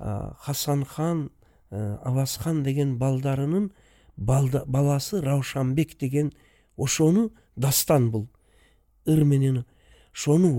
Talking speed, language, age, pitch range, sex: 80 wpm, Russian, 60-79, 140-180 Hz, male